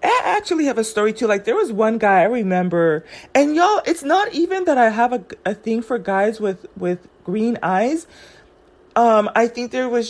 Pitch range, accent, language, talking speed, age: 200-260 Hz, American, English, 210 wpm, 30-49